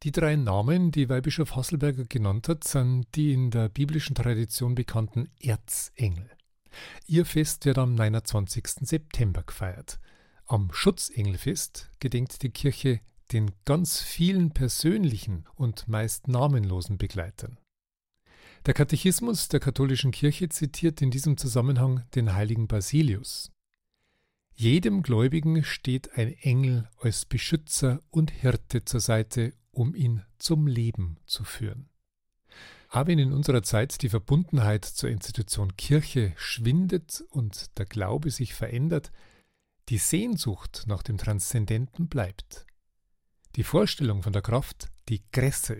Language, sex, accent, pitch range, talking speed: German, male, German, 110-145 Hz, 125 wpm